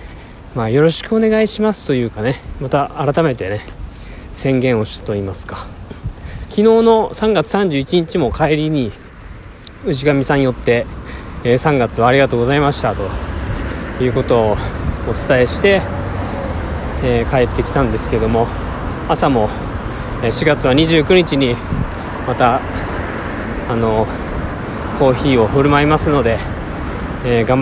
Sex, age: male, 20-39